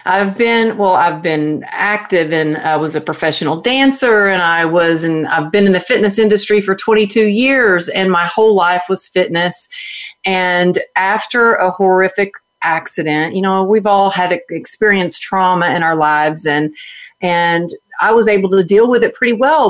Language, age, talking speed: English, 40-59, 175 wpm